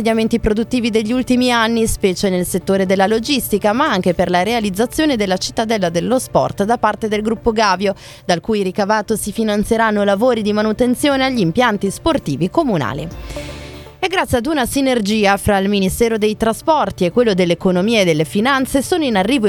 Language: Italian